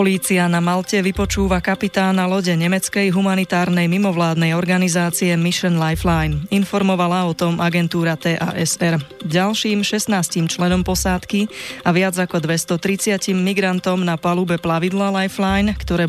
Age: 20-39